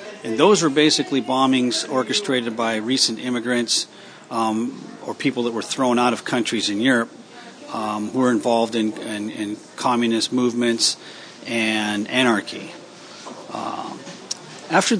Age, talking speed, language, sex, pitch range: 40-59, 130 wpm, English, male, 115-135 Hz